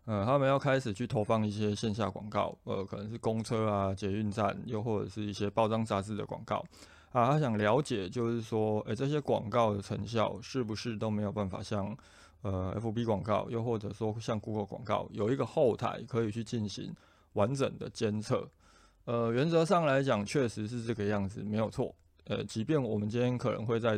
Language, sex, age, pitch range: Chinese, male, 20-39, 105-125 Hz